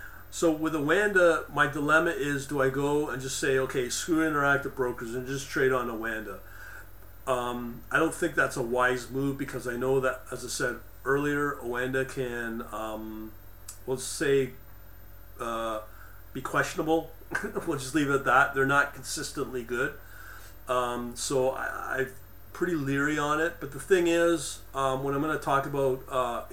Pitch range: 115-140 Hz